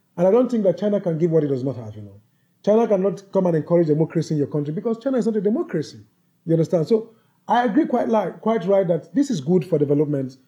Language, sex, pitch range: English, male, 165-220 Hz